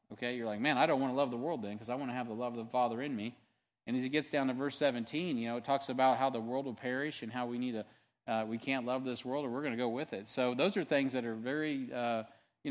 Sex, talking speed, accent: male, 325 wpm, American